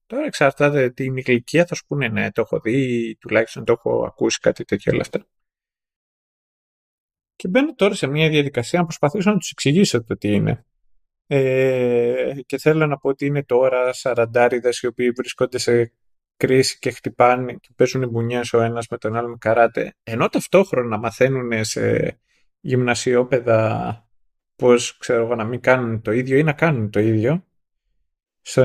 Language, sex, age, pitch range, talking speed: Greek, male, 20-39, 115-150 Hz, 160 wpm